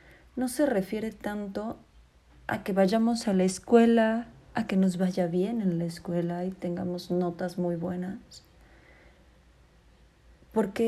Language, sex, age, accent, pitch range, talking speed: Spanish, female, 30-49, Mexican, 180-230 Hz, 130 wpm